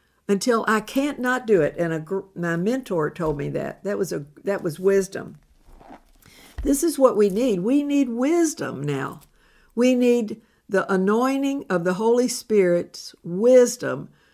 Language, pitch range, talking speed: English, 165-230 Hz, 155 wpm